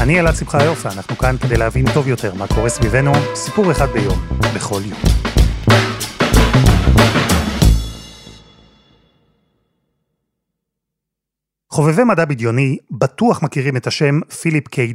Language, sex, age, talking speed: Hebrew, male, 30-49, 110 wpm